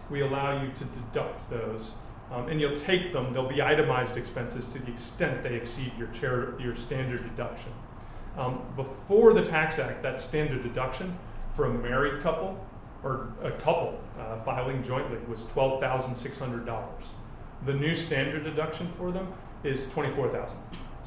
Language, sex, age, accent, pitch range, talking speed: English, male, 40-59, American, 120-150 Hz, 150 wpm